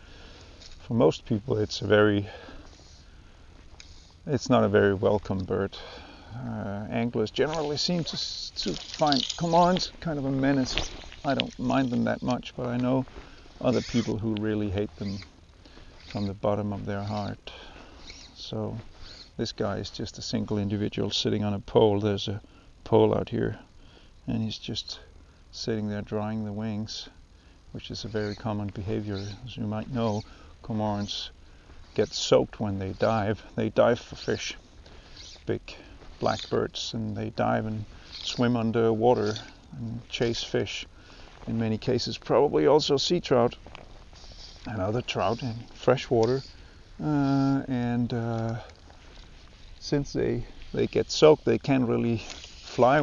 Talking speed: 145 wpm